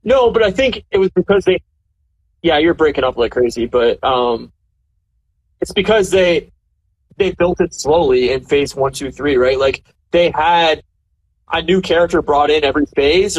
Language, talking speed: English, 175 wpm